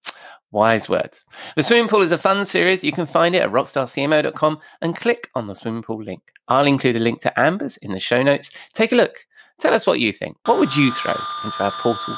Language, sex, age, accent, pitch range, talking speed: English, male, 20-39, British, 105-170 Hz, 230 wpm